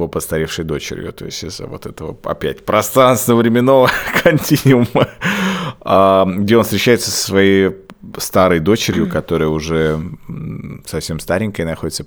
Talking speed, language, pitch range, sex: 120 wpm, Russian, 85-115 Hz, male